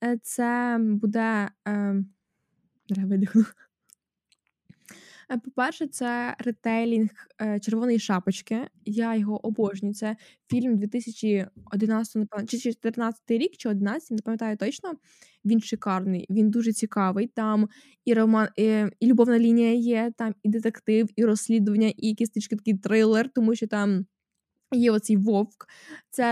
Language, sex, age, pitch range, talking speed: Ukrainian, female, 10-29, 210-245 Hz, 120 wpm